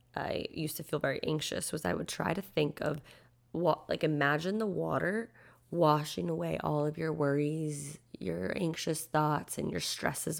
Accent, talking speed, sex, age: American, 175 wpm, female, 20-39